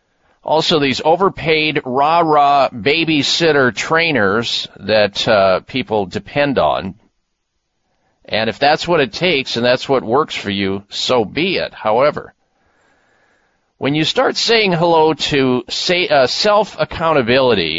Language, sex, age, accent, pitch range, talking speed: English, male, 40-59, American, 130-190 Hz, 120 wpm